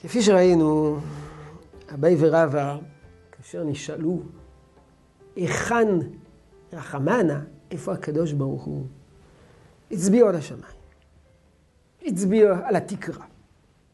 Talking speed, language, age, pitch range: 80 wpm, Hebrew, 50-69, 140-210 Hz